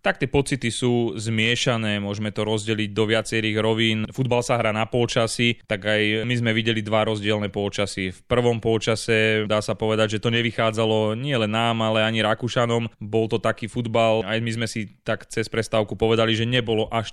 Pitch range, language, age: 110-115 Hz, Slovak, 20-39